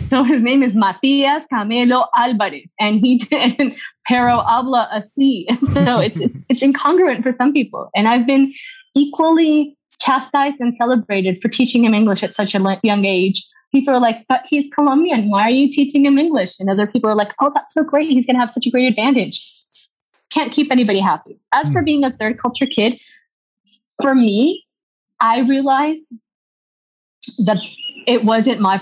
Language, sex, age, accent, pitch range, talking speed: English, female, 20-39, American, 220-280 Hz, 175 wpm